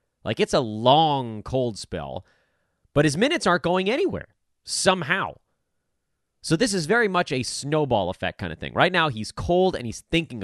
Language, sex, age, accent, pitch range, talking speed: English, male, 30-49, American, 95-155 Hz, 180 wpm